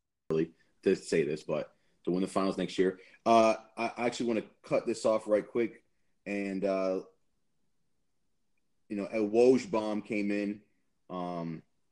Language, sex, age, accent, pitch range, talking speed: English, male, 30-49, American, 90-105 Hz, 150 wpm